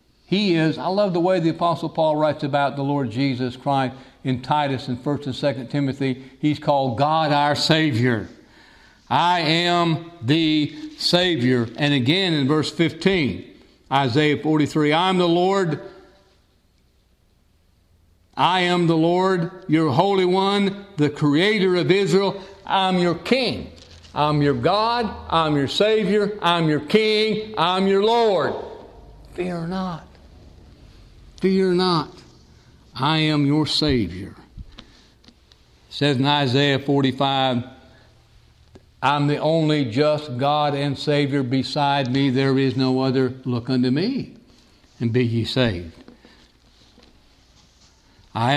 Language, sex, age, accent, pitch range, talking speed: English, male, 60-79, American, 130-170 Hz, 125 wpm